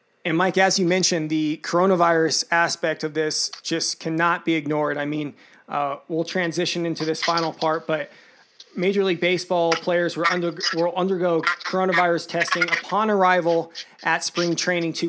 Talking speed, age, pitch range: 145 wpm, 20-39, 160-180 Hz